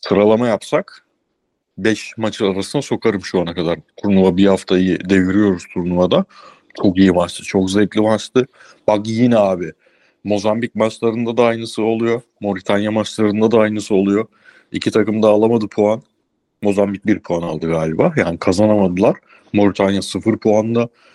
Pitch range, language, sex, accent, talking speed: 95-110 Hz, Turkish, male, native, 140 wpm